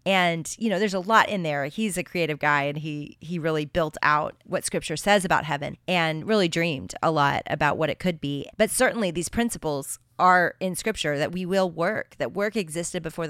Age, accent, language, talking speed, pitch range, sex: 30-49, American, English, 215 wpm, 155-190 Hz, female